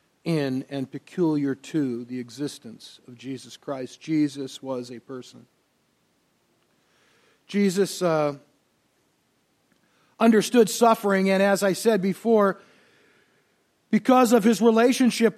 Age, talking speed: 50-69, 100 wpm